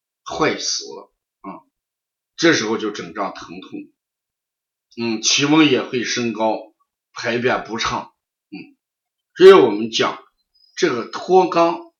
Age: 50-69